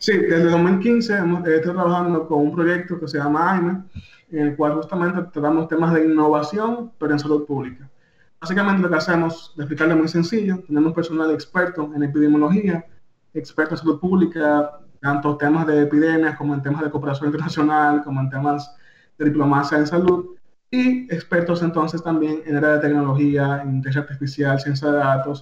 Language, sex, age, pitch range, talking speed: Spanish, male, 20-39, 145-170 Hz, 170 wpm